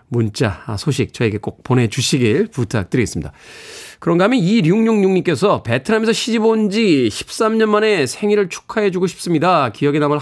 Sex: male